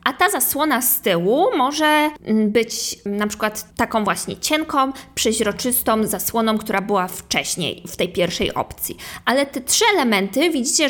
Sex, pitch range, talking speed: female, 195-250 Hz, 145 wpm